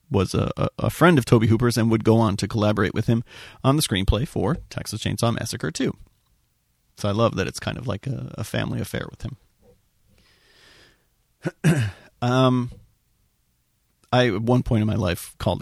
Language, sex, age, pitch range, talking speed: English, male, 40-59, 105-130 Hz, 175 wpm